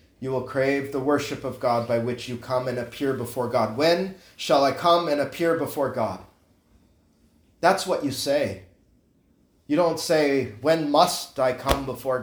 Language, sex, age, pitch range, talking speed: English, male, 30-49, 120-175 Hz, 170 wpm